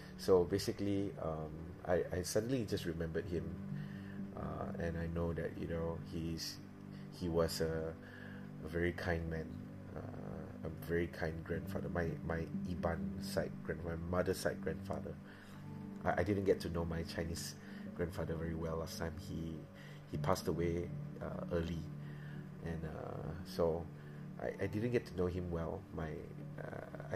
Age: 30-49